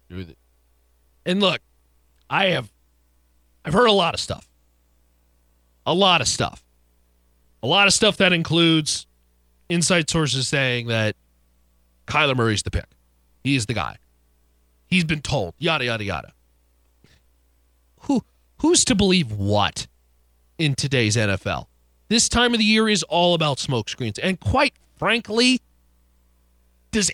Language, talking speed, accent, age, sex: English, 135 wpm, American, 40-59, male